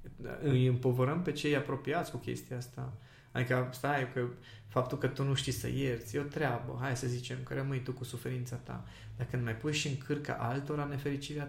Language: Romanian